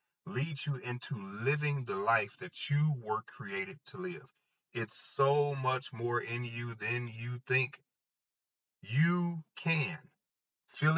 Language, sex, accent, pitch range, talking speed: English, male, American, 120-150 Hz, 130 wpm